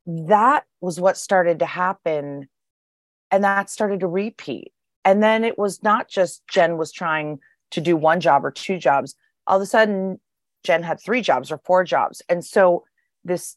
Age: 30-49